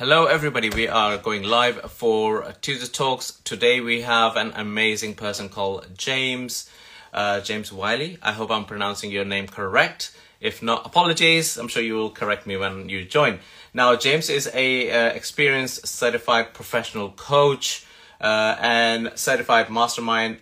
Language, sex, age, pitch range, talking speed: English, male, 30-49, 105-125 Hz, 155 wpm